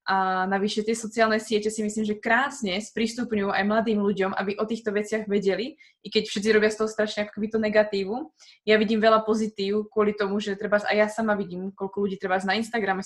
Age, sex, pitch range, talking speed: 20-39, female, 200-225 Hz, 200 wpm